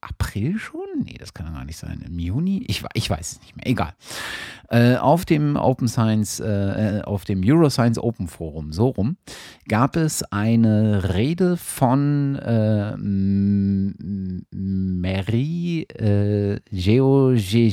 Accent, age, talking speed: German, 50-69, 130 wpm